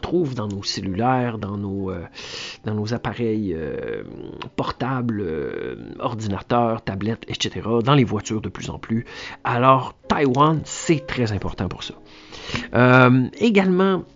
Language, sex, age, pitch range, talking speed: French, male, 50-69, 115-155 Hz, 135 wpm